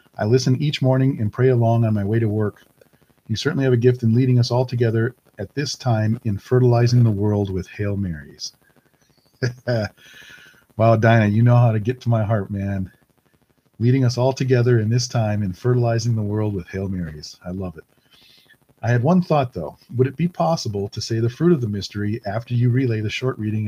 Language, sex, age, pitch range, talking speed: English, male, 40-59, 105-125 Hz, 210 wpm